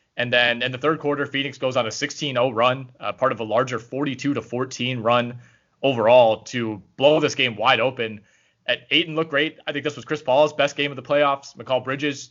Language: English